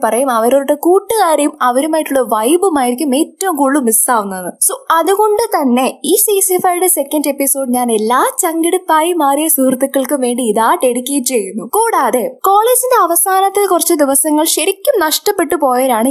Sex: female